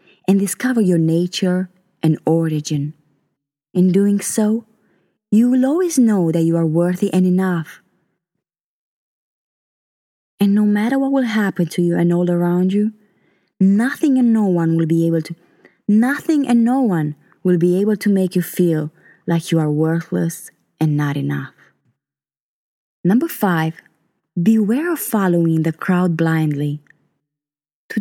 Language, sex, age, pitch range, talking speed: English, female, 20-39, 165-210 Hz, 140 wpm